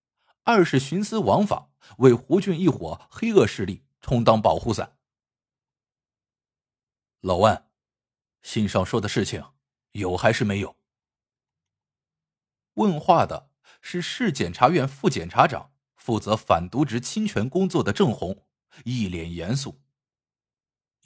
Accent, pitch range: native, 110-150 Hz